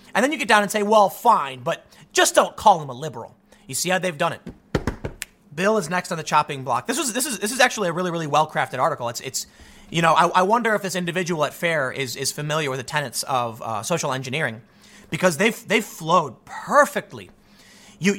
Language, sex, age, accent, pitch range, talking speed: English, male, 30-49, American, 155-210 Hz, 230 wpm